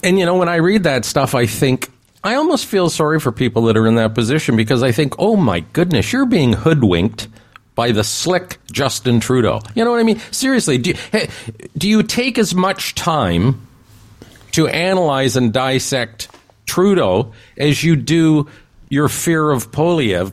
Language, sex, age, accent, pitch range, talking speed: English, male, 50-69, American, 110-160 Hz, 175 wpm